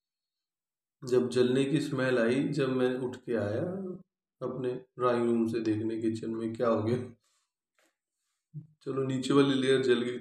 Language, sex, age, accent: Hindi, male, 30-49, native